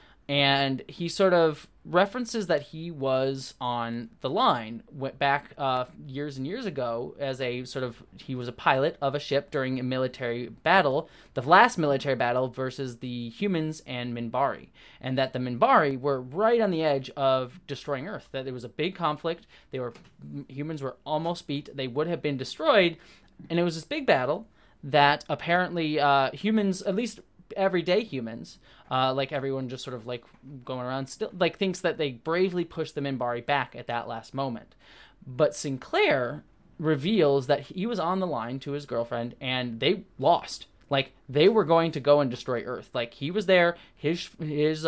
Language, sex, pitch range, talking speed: Danish, male, 130-165 Hz, 185 wpm